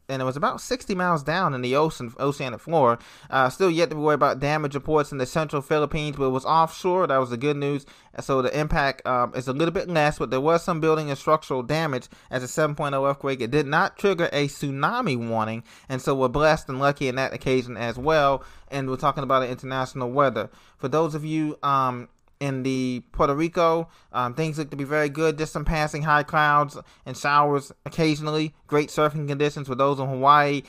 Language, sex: English, male